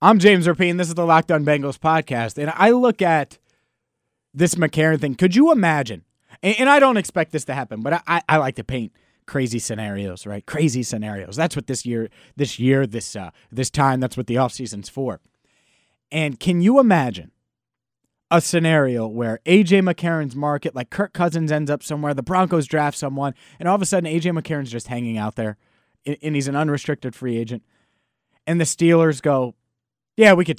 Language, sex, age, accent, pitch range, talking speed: English, male, 30-49, American, 125-160 Hz, 190 wpm